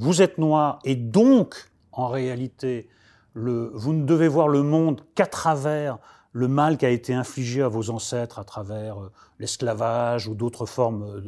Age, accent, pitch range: 30-49, French, 120-165 Hz